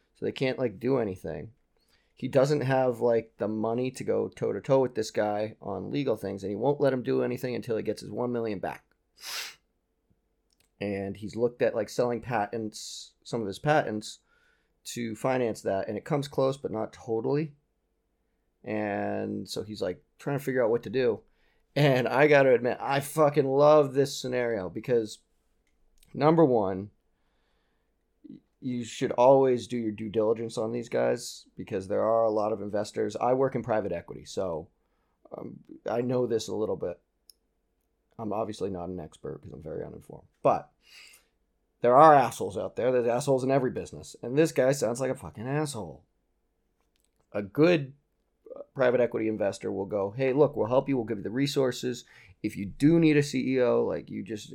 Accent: American